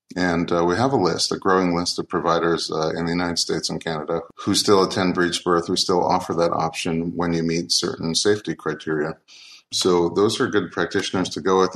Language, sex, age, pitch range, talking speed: English, male, 30-49, 85-105 Hz, 215 wpm